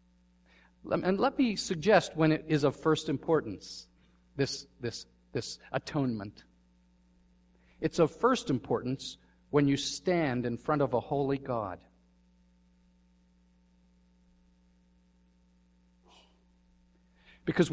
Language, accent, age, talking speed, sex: English, American, 50-69, 95 wpm, male